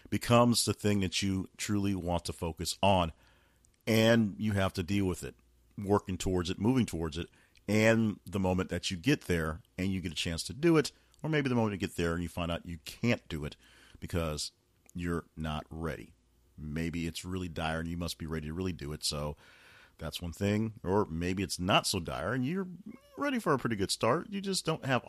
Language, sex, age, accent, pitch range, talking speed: English, male, 40-59, American, 85-105 Hz, 220 wpm